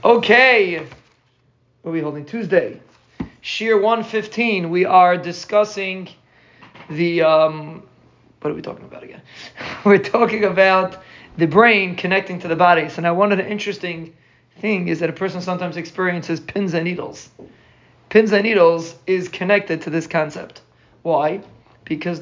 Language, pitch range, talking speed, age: English, 165-195 Hz, 150 wpm, 30-49